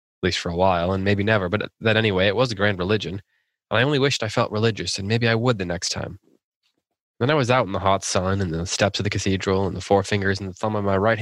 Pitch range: 95-105 Hz